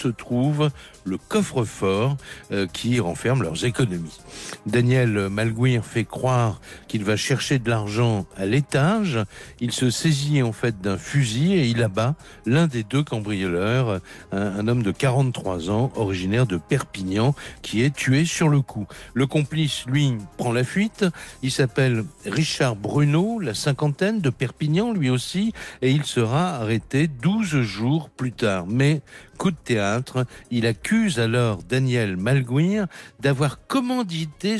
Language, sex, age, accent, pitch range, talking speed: French, male, 60-79, French, 110-150 Hz, 140 wpm